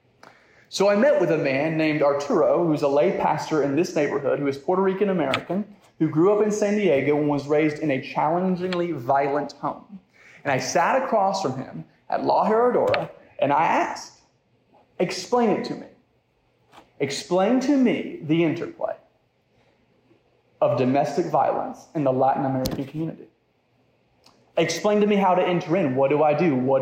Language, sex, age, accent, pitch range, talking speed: English, male, 30-49, American, 150-200 Hz, 165 wpm